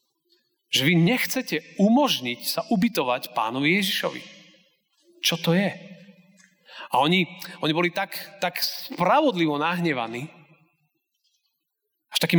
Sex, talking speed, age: male, 100 wpm, 30-49